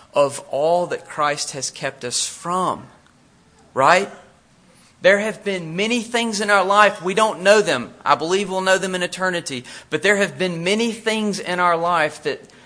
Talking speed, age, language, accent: 180 wpm, 40-59, English, American